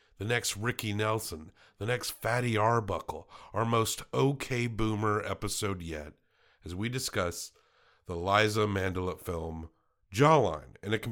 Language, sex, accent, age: English, male, American, 50-69